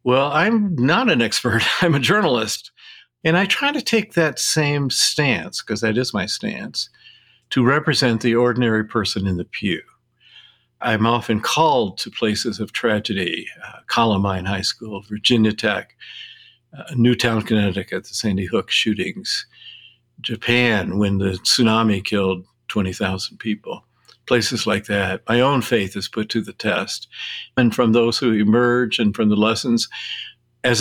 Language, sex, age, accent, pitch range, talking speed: English, male, 50-69, American, 105-125 Hz, 150 wpm